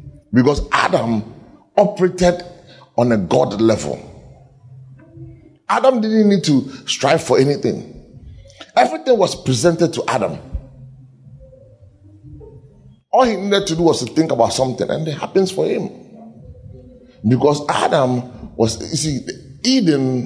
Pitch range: 125-175 Hz